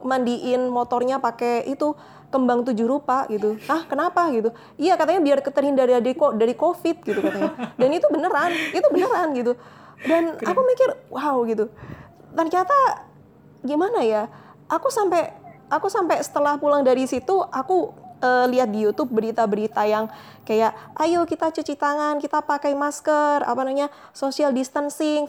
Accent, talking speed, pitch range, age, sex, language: native, 145 wpm, 225-290 Hz, 20-39, female, Indonesian